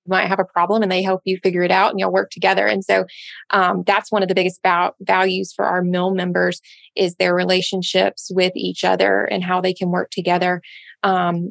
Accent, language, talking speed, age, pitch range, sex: American, English, 220 wpm, 20-39, 175-190 Hz, female